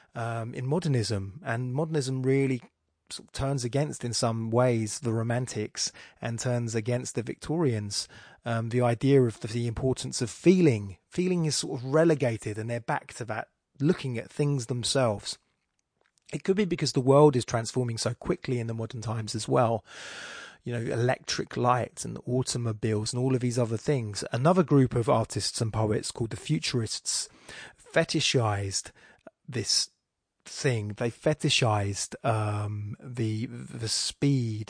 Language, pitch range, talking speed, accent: English, 115-145 Hz, 150 wpm, British